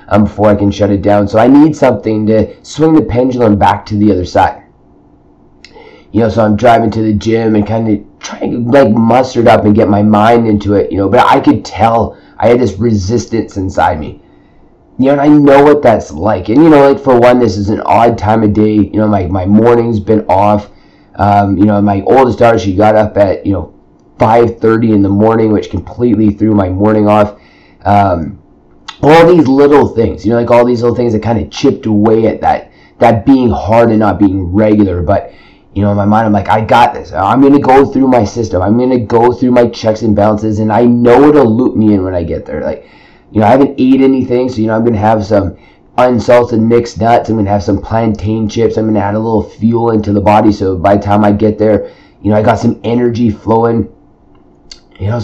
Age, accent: 30-49, American